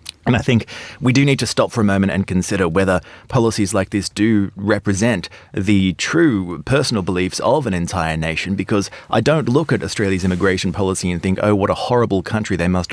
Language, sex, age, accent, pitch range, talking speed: English, male, 30-49, Australian, 95-125 Hz, 205 wpm